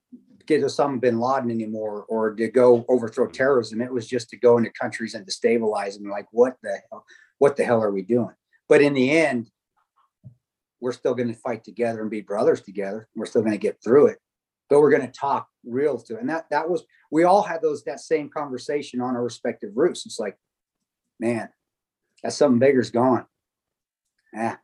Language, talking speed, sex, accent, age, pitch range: English, 205 wpm, male, American, 40-59, 120-150 Hz